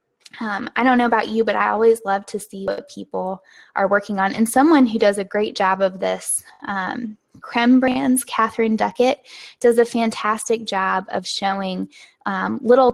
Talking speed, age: 175 wpm, 10-29